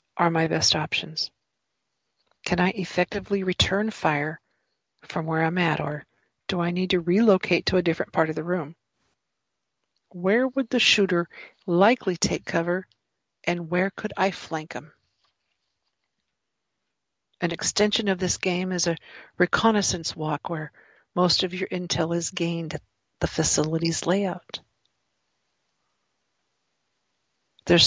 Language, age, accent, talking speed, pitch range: English, 50-69, American, 130 wpm, 165-195 Hz